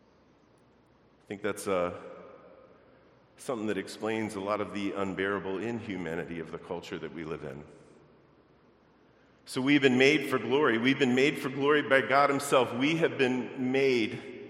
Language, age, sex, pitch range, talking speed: English, 40-59, male, 100-125 Hz, 155 wpm